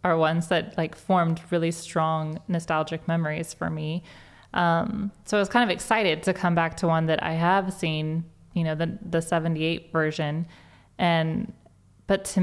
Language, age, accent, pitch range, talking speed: English, 20-39, American, 160-190 Hz, 175 wpm